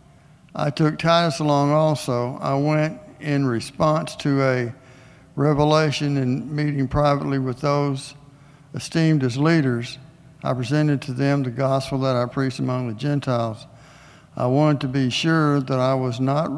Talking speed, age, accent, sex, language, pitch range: 150 wpm, 60-79, American, male, English, 130-150 Hz